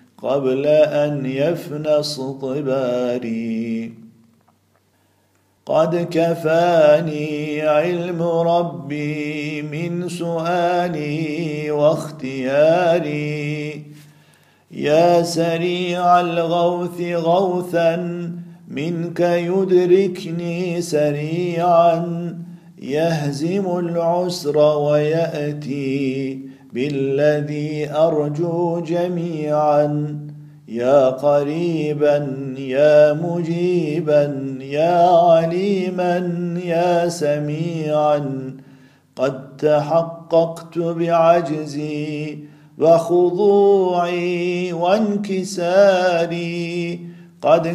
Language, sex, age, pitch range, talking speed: Turkish, male, 50-69, 140-170 Hz, 50 wpm